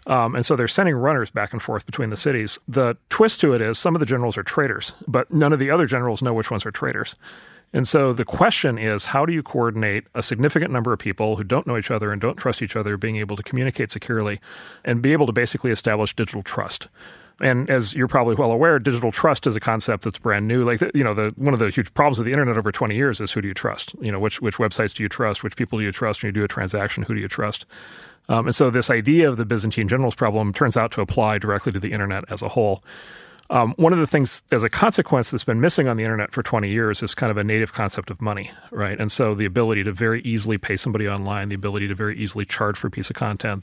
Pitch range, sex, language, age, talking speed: 105-130 Hz, male, English, 30-49, 270 wpm